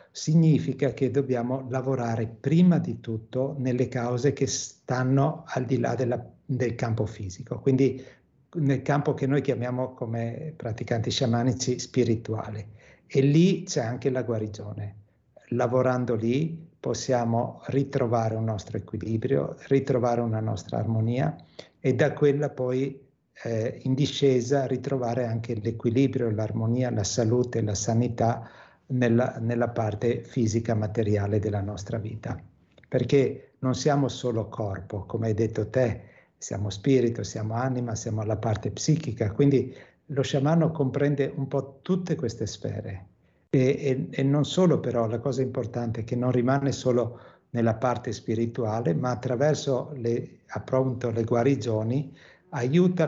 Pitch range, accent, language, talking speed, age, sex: 115-135 Hz, native, Italian, 130 wpm, 60-79, male